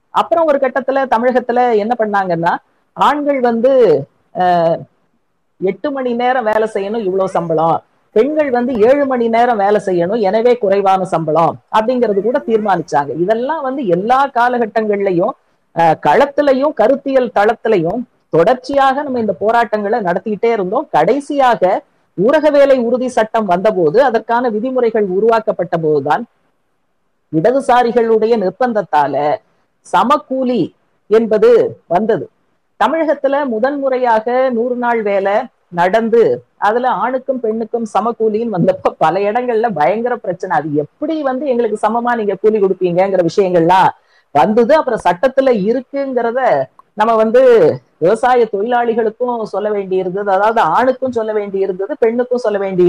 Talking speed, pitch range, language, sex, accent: 110 wpm, 200-255 Hz, Tamil, female, native